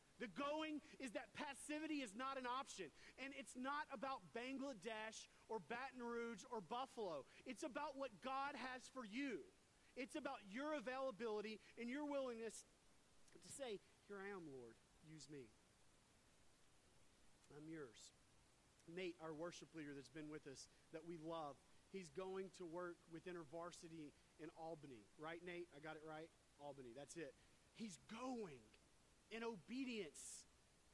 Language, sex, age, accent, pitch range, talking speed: English, male, 40-59, American, 180-270 Hz, 145 wpm